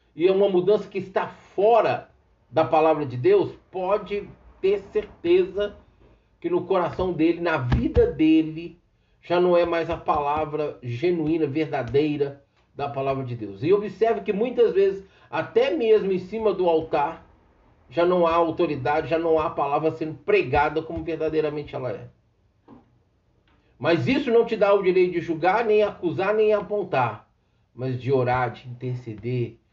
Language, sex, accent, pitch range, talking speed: Portuguese, male, Brazilian, 130-185 Hz, 155 wpm